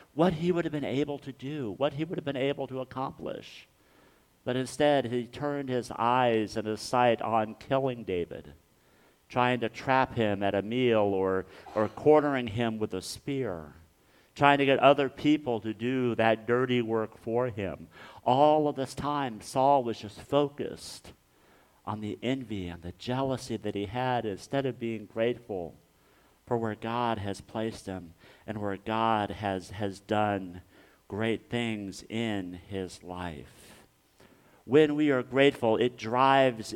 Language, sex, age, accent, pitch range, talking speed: English, male, 50-69, American, 95-125 Hz, 160 wpm